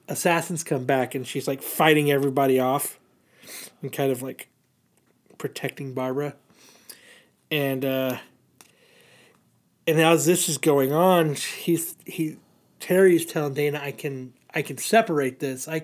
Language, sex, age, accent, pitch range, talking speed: English, male, 30-49, American, 135-160 Hz, 135 wpm